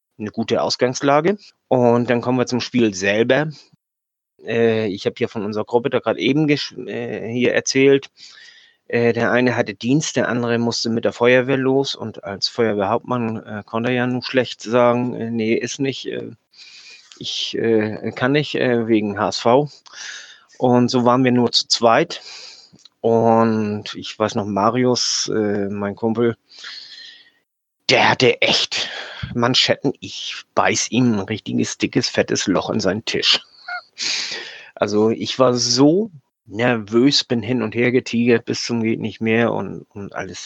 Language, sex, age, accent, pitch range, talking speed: German, male, 30-49, German, 115-140 Hz, 155 wpm